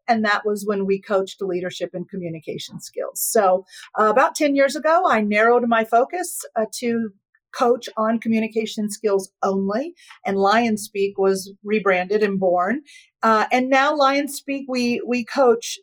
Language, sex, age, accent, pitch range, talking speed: English, female, 40-59, American, 205-260 Hz, 160 wpm